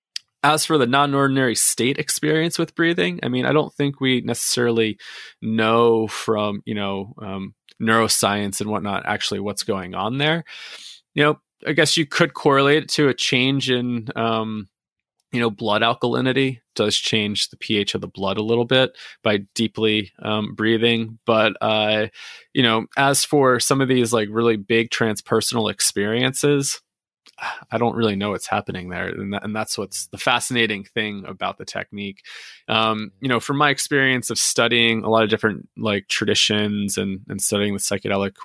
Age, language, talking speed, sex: 20-39, English, 170 wpm, male